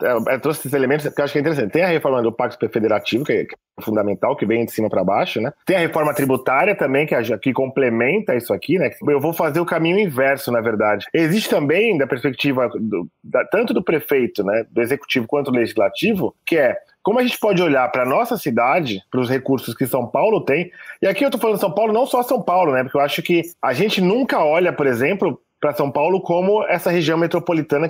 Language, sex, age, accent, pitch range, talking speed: Portuguese, male, 20-39, Brazilian, 130-180 Hz, 235 wpm